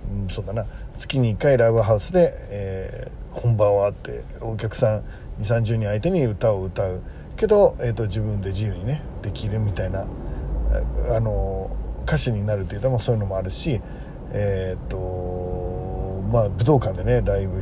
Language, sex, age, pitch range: Japanese, male, 40-59, 100-130 Hz